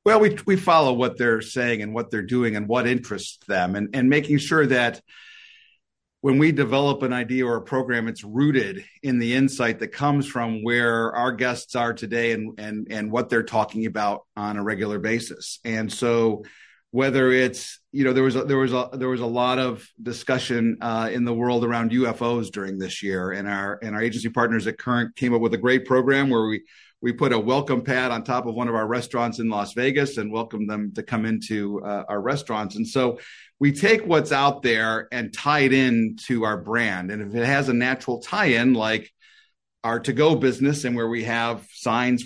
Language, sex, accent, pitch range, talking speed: English, male, American, 110-130 Hz, 210 wpm